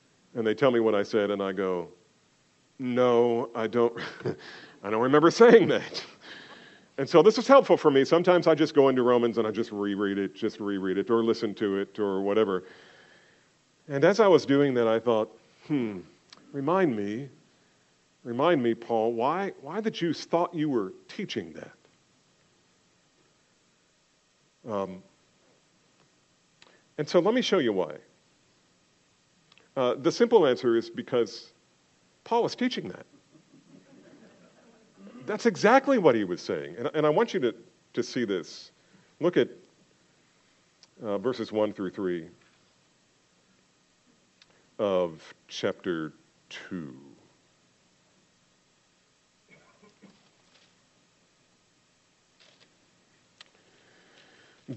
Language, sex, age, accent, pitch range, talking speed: English, male, 50-69, American, 100-160 Hz, 120 wpm